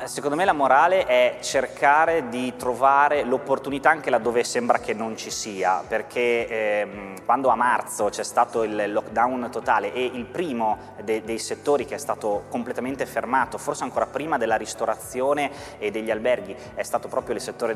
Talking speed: 170 wpm